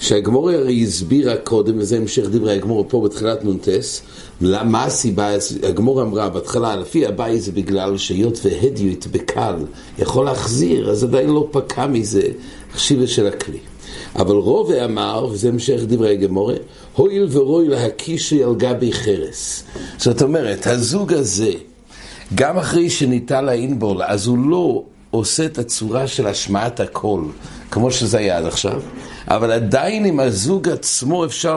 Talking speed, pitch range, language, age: 135 wpm, 105-135 Hz, English, 60-79